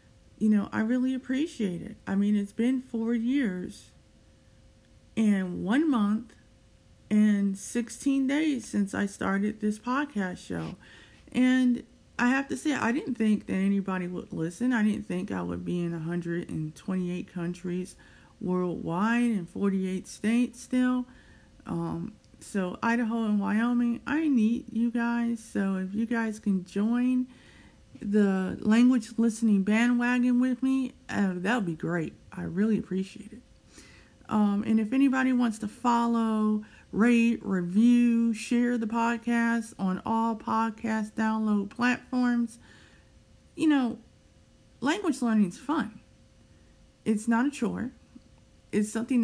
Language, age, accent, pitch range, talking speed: English, 50-69, American, 195-240 Hz, 130 wpm